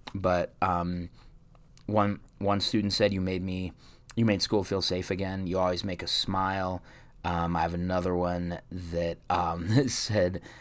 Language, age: English, 30-49